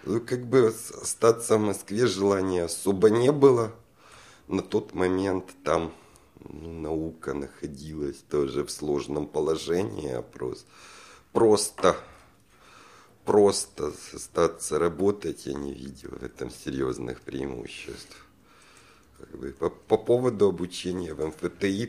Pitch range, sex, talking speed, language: 75-100 Hz, male, 105 wpm, Russian